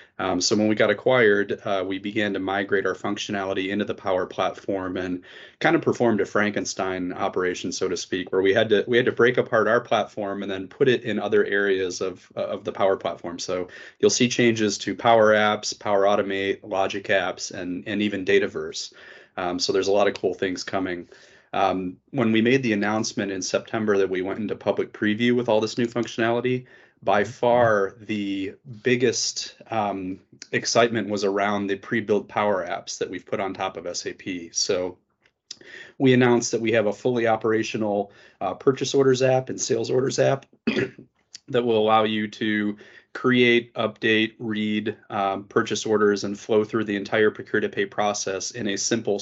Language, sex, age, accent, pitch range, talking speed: English, male, 30-49, American, 95-110 Hz, 185 wpm